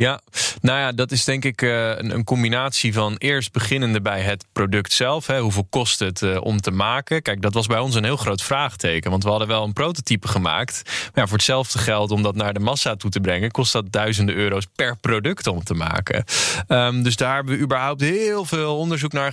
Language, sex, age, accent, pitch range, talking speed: Dutch, male, 20-39, Dutch, 105-130 Hz, 220 wpm